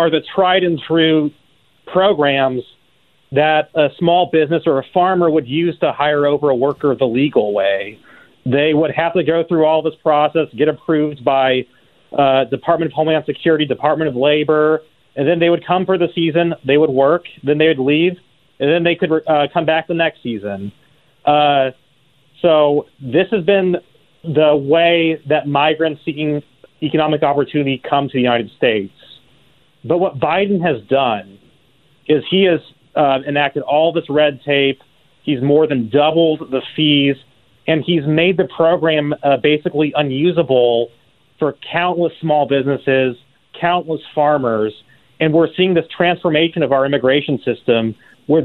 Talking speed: 160 wpm